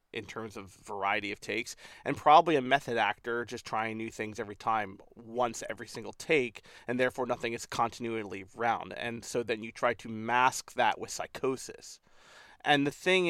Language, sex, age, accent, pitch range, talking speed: English, male, 30-49, American, 115-145 Hz, 180 wpm